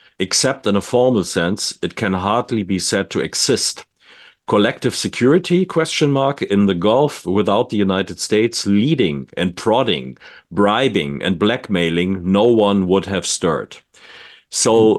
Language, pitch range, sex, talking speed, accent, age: English, 95-115 Hz, male, 140 wpm, German, 50-69